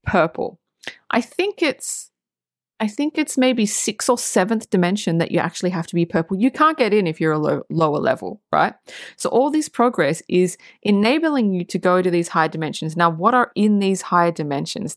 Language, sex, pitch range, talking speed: English, female, 170-230 Hz, 200 wpm